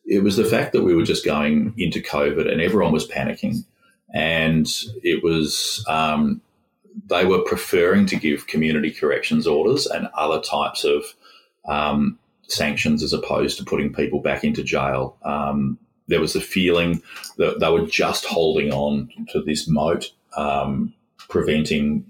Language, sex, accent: English, male, Australian